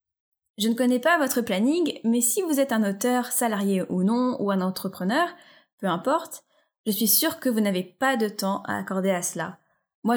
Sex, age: female, 10-29